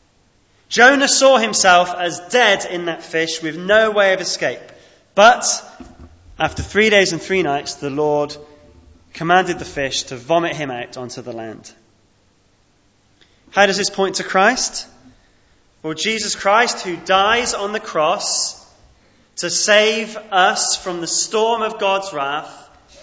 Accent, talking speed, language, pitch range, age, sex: British, 145 wpm, English, 140-210 Hz, 20-39, male